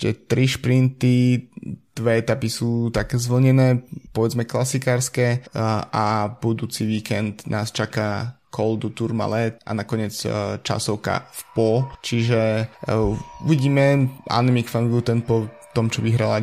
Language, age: Slovak, 20-39